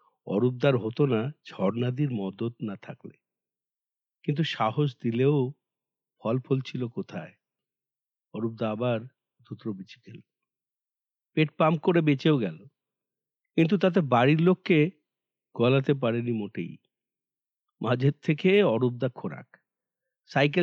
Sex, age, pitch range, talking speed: male, 50-69, 125-160 Hz, 105 wpm